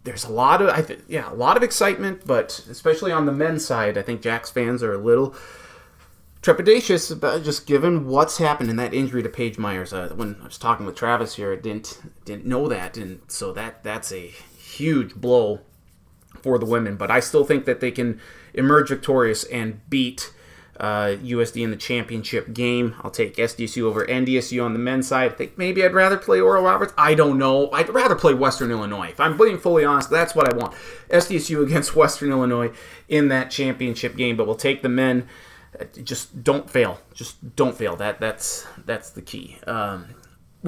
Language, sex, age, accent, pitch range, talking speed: English, male, 30-49, American, 115-155 Hz, 200 wpm